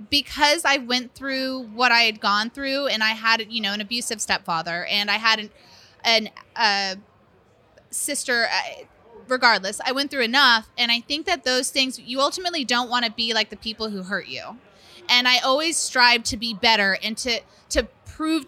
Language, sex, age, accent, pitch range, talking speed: English, female, 20-39, American, 210-260 Hz, 190 wpm